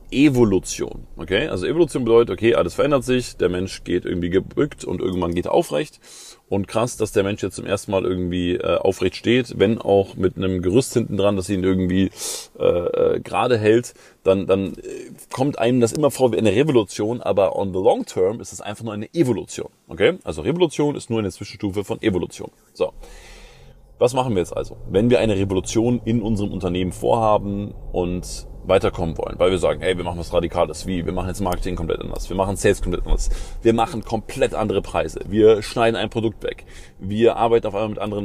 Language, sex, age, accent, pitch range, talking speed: German, male, 30-49, German, 95-120 Hz, 205 wpm